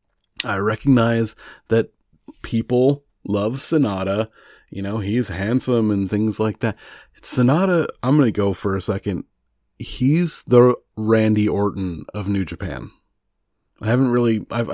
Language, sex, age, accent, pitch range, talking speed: English, male, 30-49, American, 100-120 Hz, 135 wpm